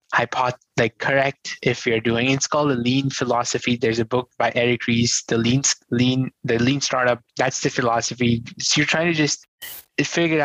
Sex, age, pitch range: male, 20-39, 115-140 Hz